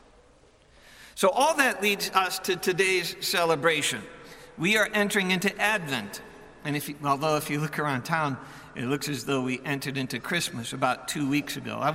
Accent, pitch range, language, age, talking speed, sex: American, 140-185 Hz, English, 60-79, 165 wpm, male